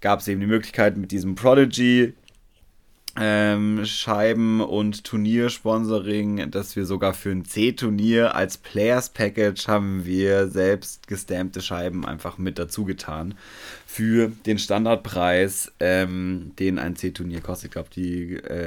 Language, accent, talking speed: German, German, 130 wpm